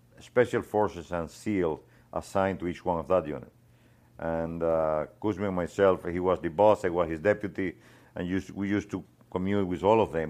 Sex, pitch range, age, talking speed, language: male, 80-95 Hz, 50-69, 200 wpm, English